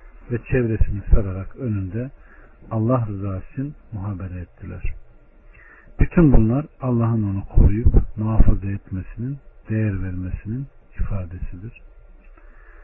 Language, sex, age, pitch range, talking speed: Turkish, male, 50-69, 95-120 Hz, 85 wpm